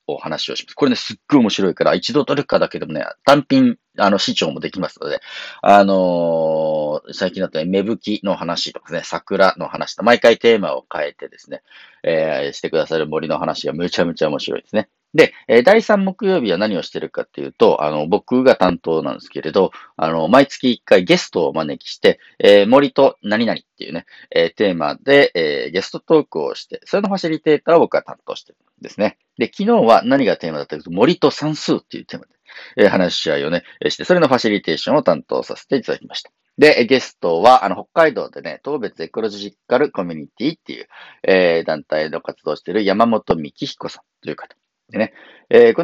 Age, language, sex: 40-59, Japanese, male